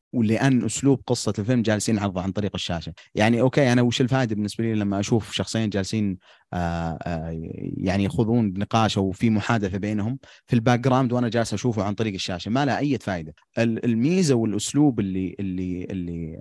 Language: Arabic